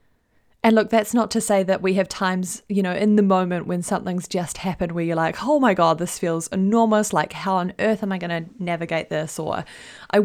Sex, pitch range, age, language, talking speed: female, 170-210 Hz, 20-39, English, 235 wpm